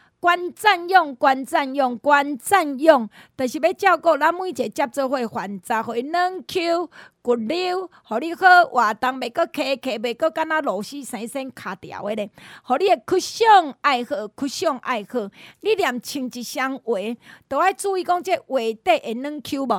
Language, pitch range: Chinese, 250-340 Hz